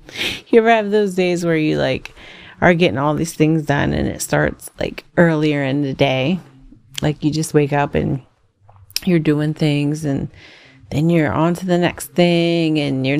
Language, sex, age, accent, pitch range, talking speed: English, female, 30-49, American, 145-180 Hz, 185 wpm